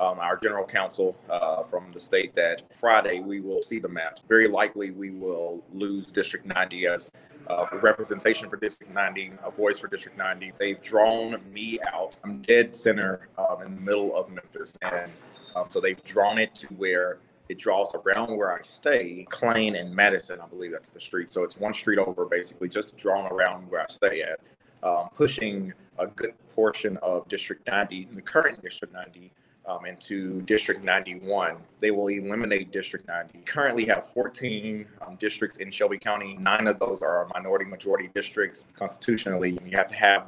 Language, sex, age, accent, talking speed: English, male, 30-49, American, 185 wpm